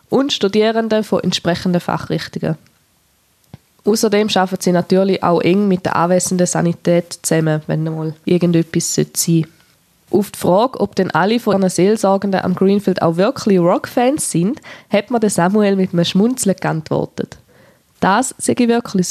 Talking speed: 145 wpm